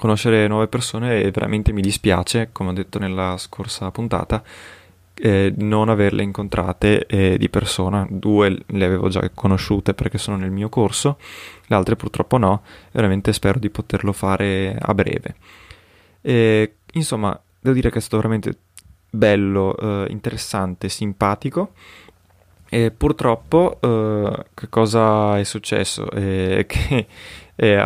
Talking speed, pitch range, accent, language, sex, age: 140 wpm, 95-115 Hz, native, Italian, male, 20-39